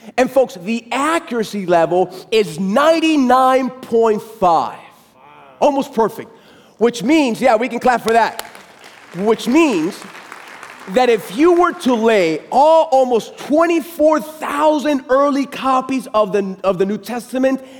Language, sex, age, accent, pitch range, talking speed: English, male, 30-49, American, 210-280 Hz, 135 wpm